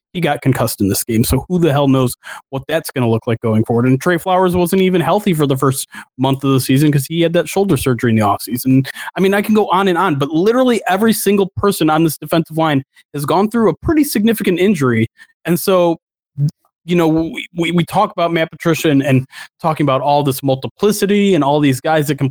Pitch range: 135-190 Hz